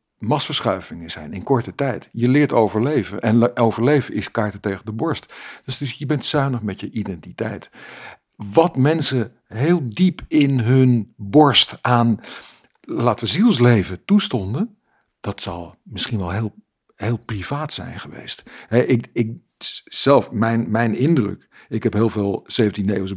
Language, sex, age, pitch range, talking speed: Dutch, male, 50-69, 105-130 Hz, 145 wpm